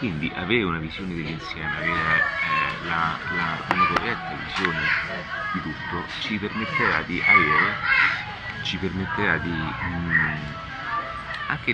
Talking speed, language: 120 wpm, Italian